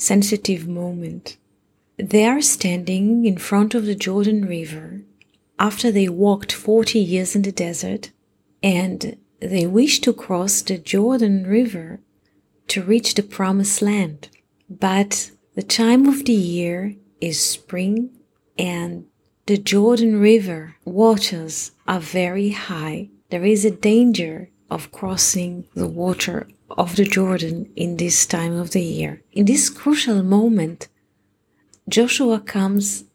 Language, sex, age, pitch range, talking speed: English, female, 30-49, 180-215 Hz, 130 wpm